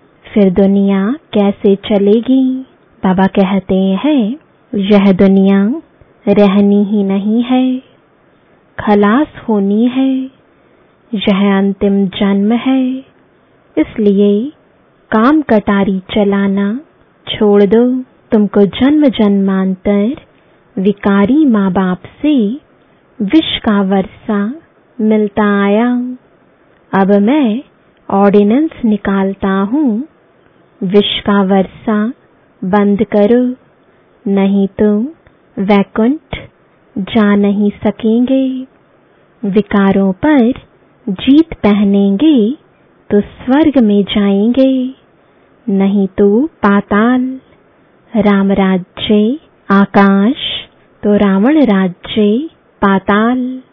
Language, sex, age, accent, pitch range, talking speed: English, female, 20-39, Indian, 200-250 Hz, 75 wpm